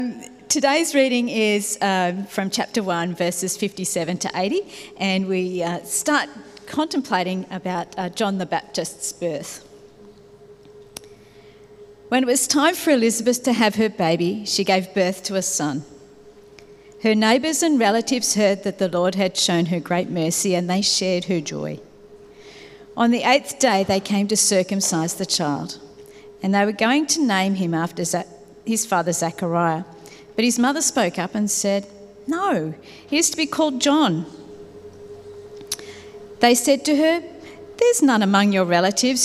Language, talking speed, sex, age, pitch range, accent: English, 155 wpm, female, 40-59, 180-250 Hz, Australian